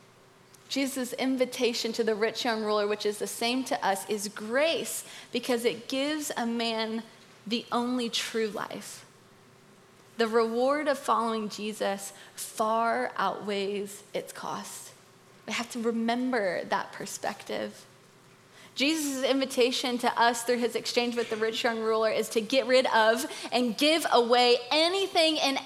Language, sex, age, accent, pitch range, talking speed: English, female, 20-39, American, 230-280 Hz, 145 wpm